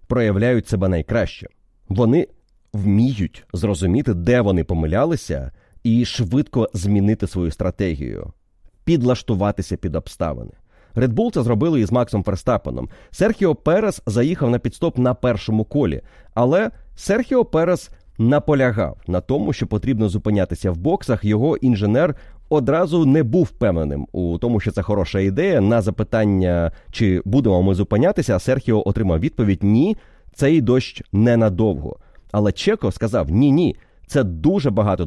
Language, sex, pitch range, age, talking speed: Ukrainian, male, 95-130 Hz, 30-49, 130 wpm